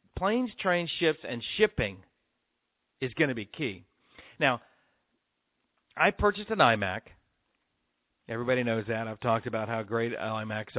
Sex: male